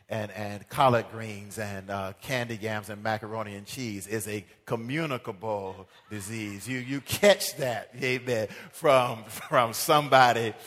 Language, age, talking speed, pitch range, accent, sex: English, 40-59, 135 wpm, 110-140 Hz, American, male